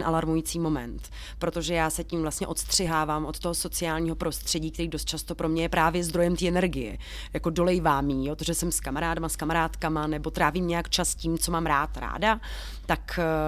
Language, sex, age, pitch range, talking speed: Czech, female, 30-49, 155-175 Hz, 185 wpm